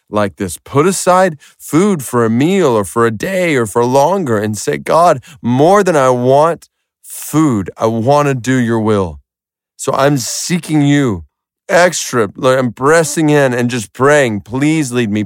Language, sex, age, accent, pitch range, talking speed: English, male, 30-49, American, 95-120 Hz, 170 wpm